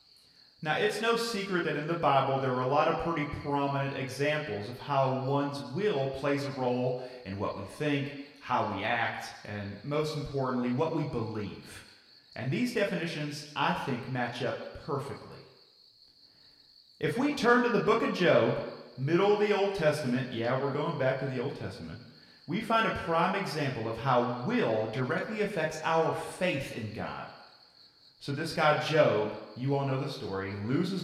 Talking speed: 170 wpm